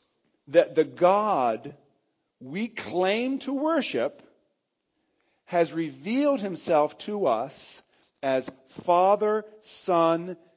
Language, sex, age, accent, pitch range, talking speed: English, male, 50-69, American, 160-215 Hz, 85 wpm